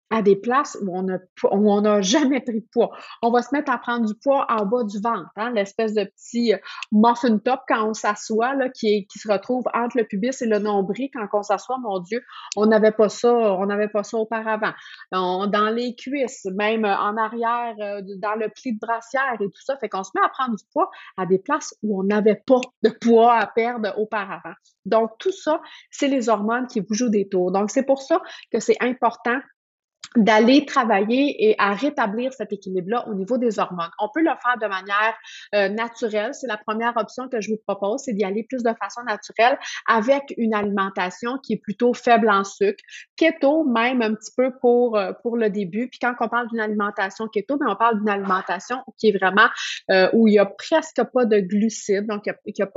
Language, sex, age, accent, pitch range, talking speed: French, female, 30-49, Canadian, 205-245 Hz, 210 wpm